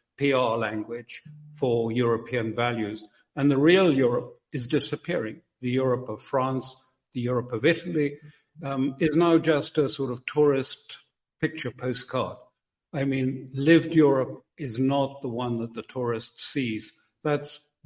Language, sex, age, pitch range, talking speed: English, male, 60-79, 120-150 Hz, 140 wpm